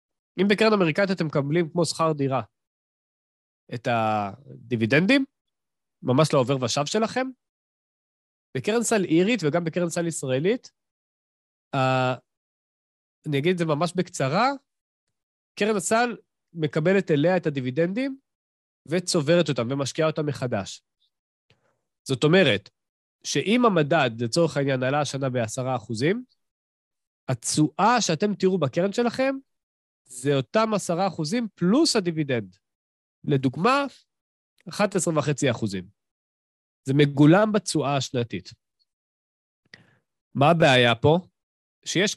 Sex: male